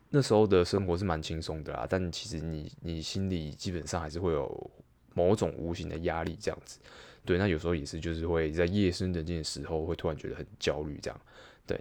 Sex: male